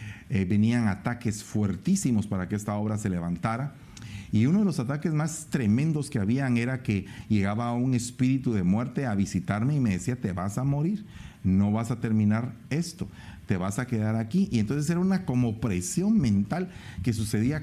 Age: 40-59